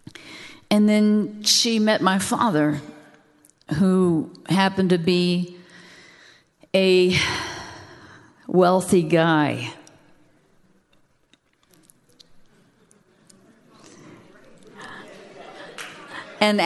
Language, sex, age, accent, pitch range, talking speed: English, female, 50-69, American, 165-205 Hz, 50 wpm